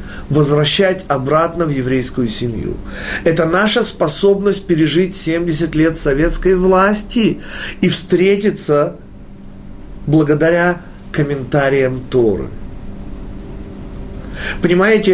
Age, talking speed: 40-59, 75 wpm